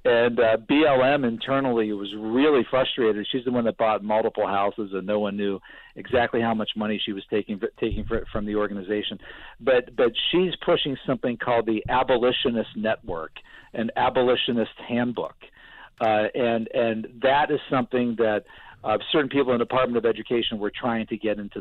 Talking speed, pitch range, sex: 175 wpm, 110-135 Hz, male